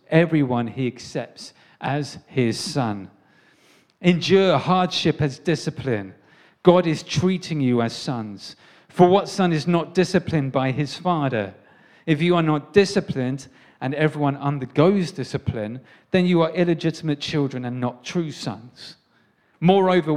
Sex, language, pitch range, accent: male, English, 125-160 Hz, British